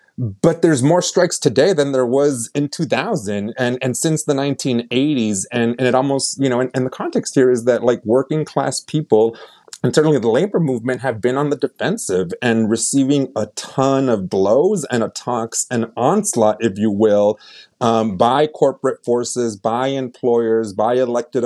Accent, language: American, English